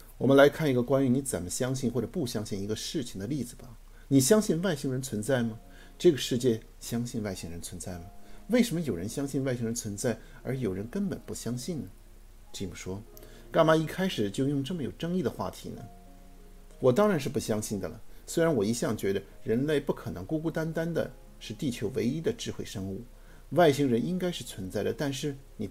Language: Chinese